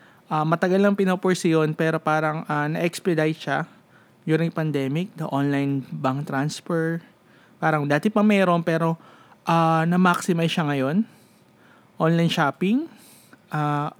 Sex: male